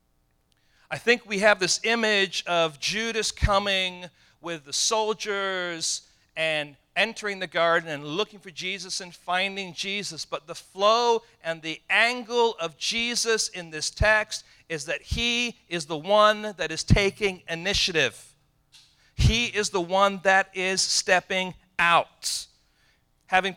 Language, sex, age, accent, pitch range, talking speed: English, male, 50-69, American, 155-210 Hz, 135 wpm